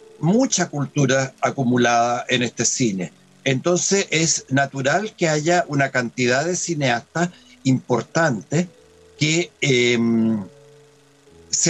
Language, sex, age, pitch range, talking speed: Spanish, male, 60-79, 130-175 Hz, 95 wpm